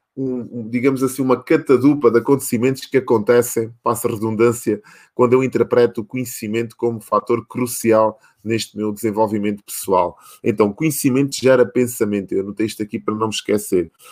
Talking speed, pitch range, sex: 145 wpm, 110-130 Hz, male